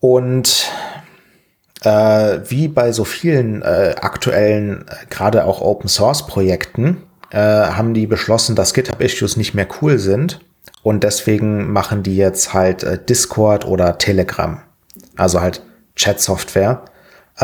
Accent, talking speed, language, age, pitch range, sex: German, 110 wpm, German, 30-49, 95-125 Hz, male